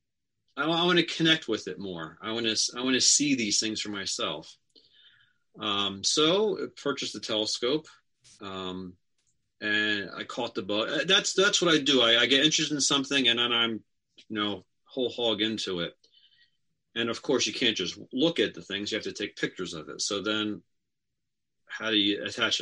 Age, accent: 40-59, American